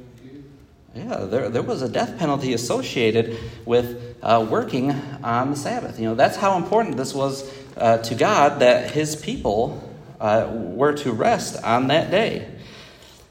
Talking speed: 155 wpm